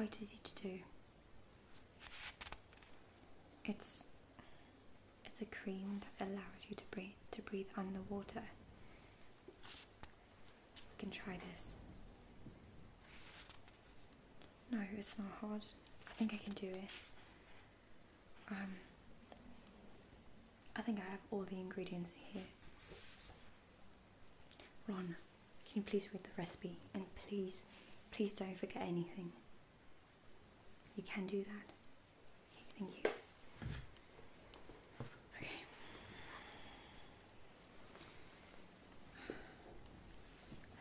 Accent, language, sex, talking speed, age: British, English, female, 90 wpm, 20-39